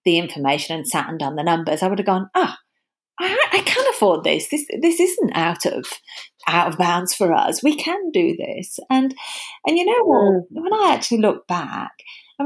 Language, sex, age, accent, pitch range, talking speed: English, female, 40-59, British, 170-265 Hz, 210 wpm